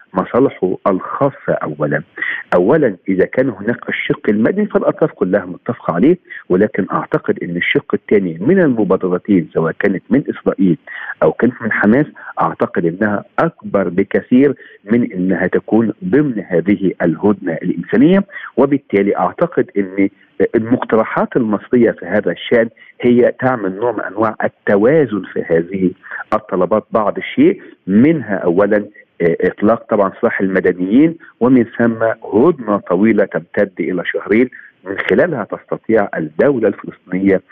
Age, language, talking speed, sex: 50-69, Arabic, 120 wpm, male